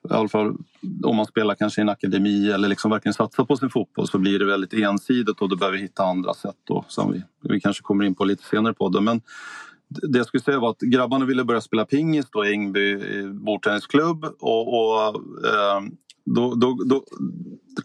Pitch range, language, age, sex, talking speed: 105-130 Hz, Swedish, 30-49, male, 210 wpm